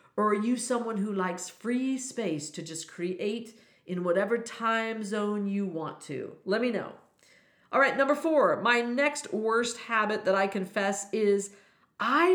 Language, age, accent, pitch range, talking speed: English, 50-69, American, 180-240 Hz, 165 wpm